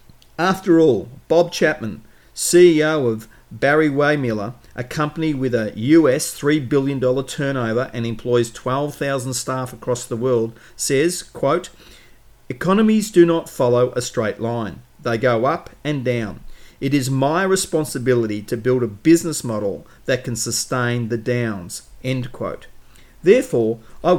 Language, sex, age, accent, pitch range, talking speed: English, male, 40-59, Australian, 120-150 Hz, 135 wpm